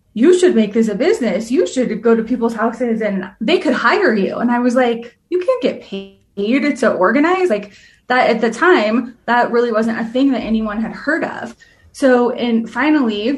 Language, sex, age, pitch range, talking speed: English, female, 20-39, 215-250 Hz, 200 wpm